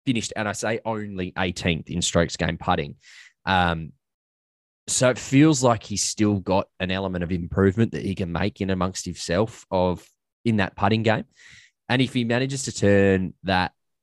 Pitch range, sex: 85-100 Hz, male